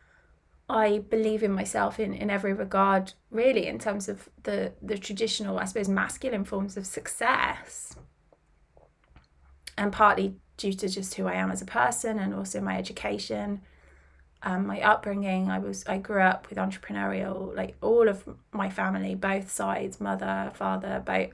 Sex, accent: female, British